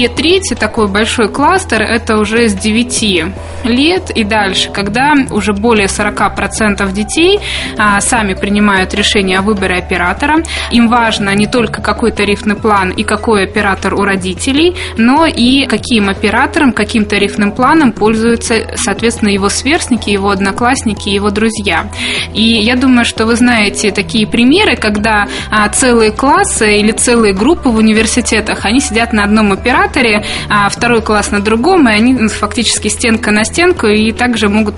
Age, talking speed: 20-39, 145 wpm